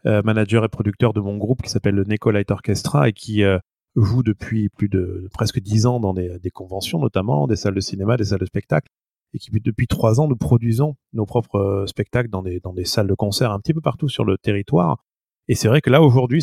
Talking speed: 245 wpm